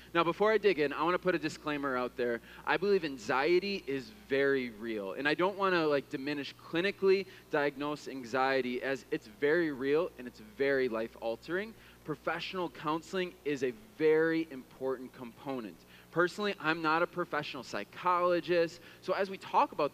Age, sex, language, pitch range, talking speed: 20-39, male, English, 130-180 Hz, 165 wpm